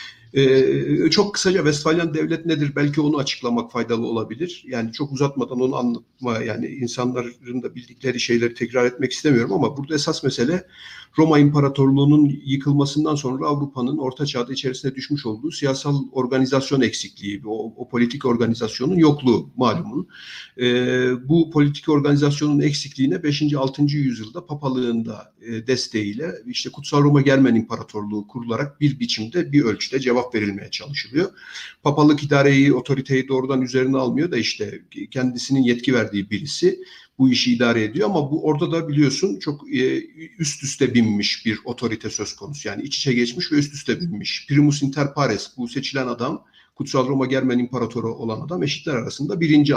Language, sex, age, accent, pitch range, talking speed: Turkish, male, 50-69, native, 120-150 Hz, 150 wpm